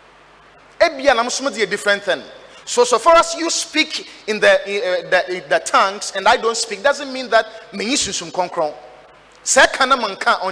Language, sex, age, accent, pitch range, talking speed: English, male, 30-49, Nigerian, 200-320 Hz, 115 wpm